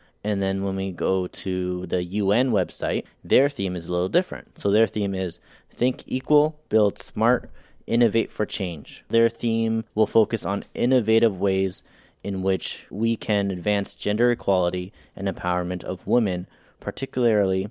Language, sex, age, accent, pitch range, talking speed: English, male, 30-49, American, 95-110 Hz, 155 wpm